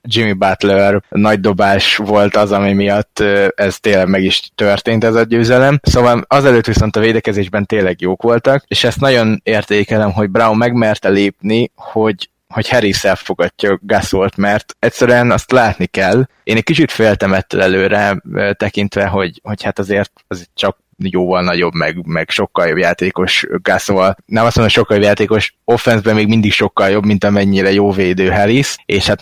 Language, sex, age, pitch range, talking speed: Hungarian, male, 20-39, 100-115 Hz, 165 wpm